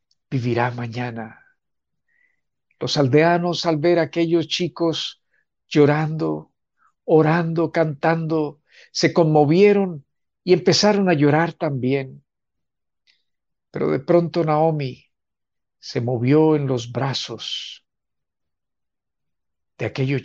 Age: 50-69